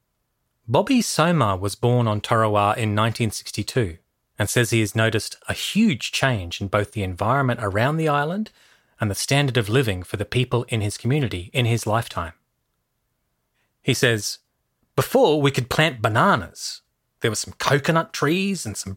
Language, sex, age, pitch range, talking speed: English, male, 30-49, 105-145 Hz, 160 wpm